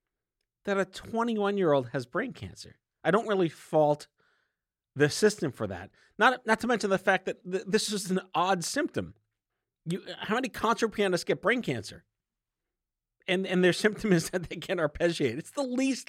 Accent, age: American, 40-59